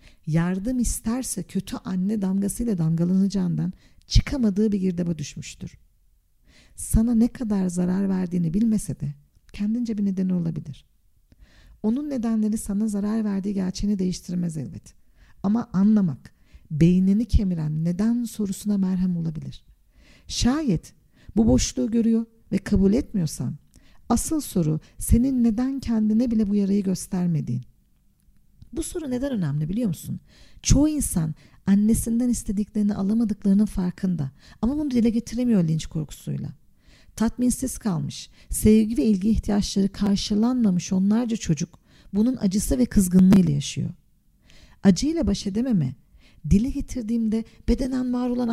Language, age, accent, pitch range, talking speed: Turkish, 50-69, native, 180-235 Hz, 115 wpm